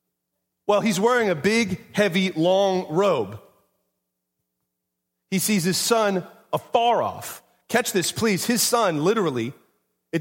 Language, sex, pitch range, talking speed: English, male, 140-200 Hz, 125 wpm